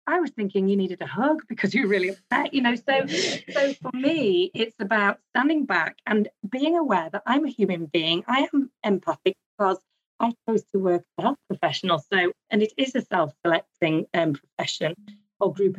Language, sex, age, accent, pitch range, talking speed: English, female, 30-49, British, 175-220 Hz, 190 wpm